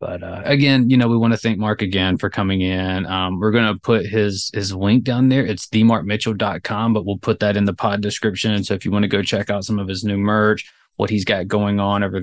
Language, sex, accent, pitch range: English, male, American, 100-115 Hz